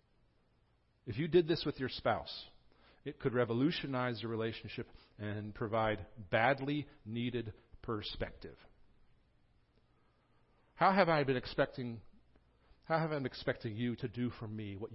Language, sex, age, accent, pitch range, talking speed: English, male, 50-69, American, 110-145 Hz, 135 wpm